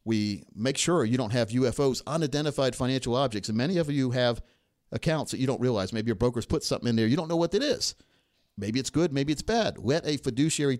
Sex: male